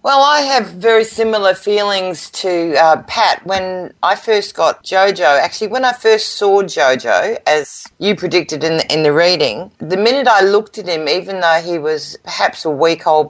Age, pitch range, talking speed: 40-59, 150-190 Hz, 190 wpm